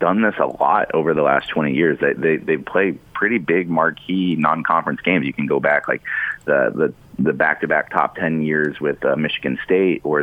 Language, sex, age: English, male, 30-49